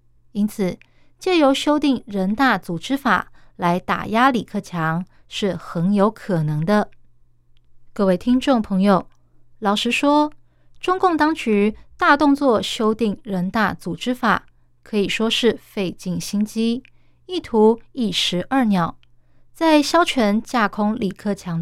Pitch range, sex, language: 175-245 Hz, female, Chinese